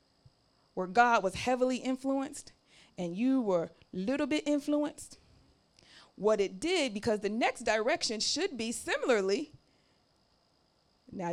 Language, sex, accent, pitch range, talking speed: English, female, American, 240-335 Hz, 120 wpm